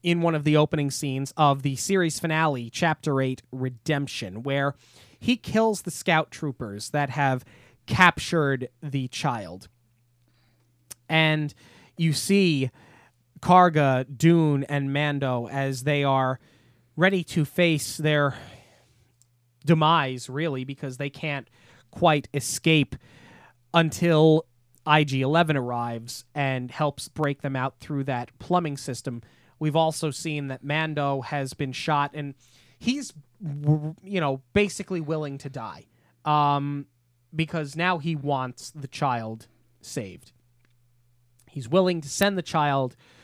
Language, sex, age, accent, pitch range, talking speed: English, male, 20-39, American, 125-155 Hz, 120 wpm